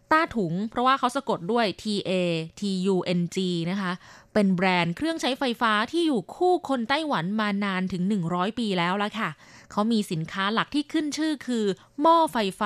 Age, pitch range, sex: 20-39, 185-260 Hz, female